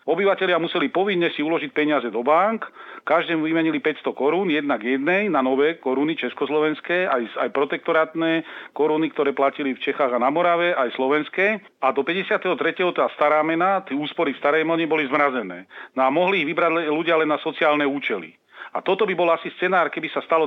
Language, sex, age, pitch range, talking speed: Slovak, male, 40-59, 145-170 Hz, 190 wpm